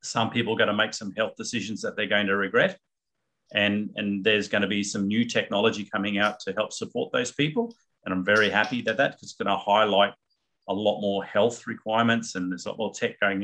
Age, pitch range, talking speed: 40-59, 95-110 Hz, 220 wpm